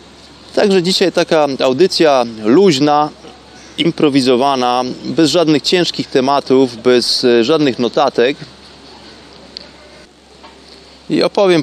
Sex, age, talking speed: male, 30-49, 75 wpm